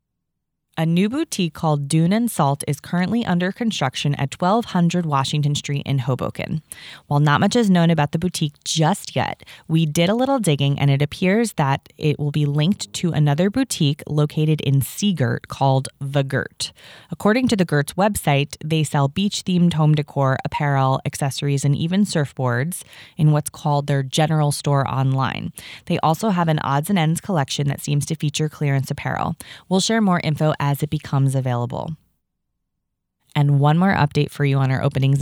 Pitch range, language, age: 140-170 Hz, English, 20-39